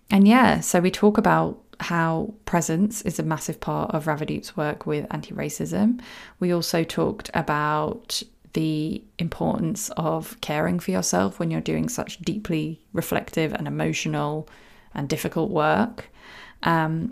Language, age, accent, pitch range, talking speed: English, 20-39, British, 160-200 Hz, 135 wpm